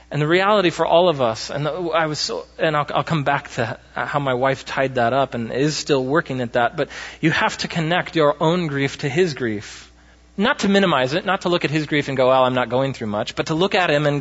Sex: male